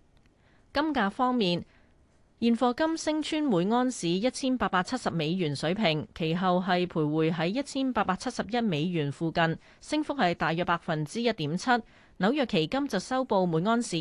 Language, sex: Chinese, female